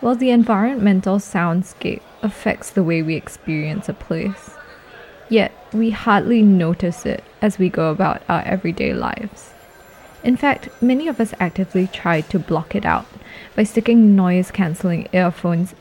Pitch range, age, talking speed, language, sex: 180-225 Hz, 20-39, 145 wpm, English, female